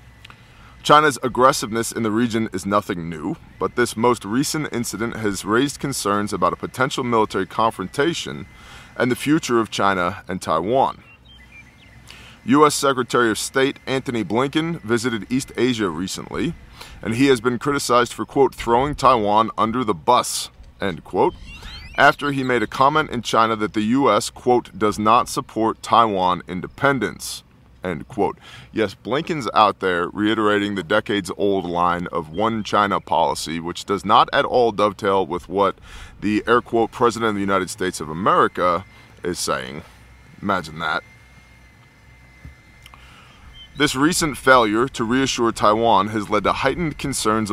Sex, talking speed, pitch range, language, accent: male, 145 wpm, 95-125 Hz, English, American